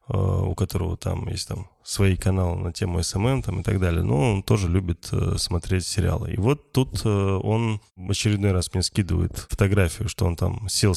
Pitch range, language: 95-120 Hz, Russian